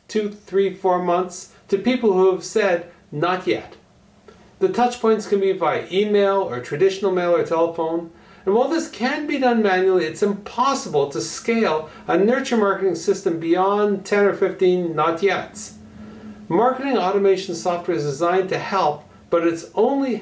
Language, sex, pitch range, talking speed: English, male, 175-220 Hz, 155 wpm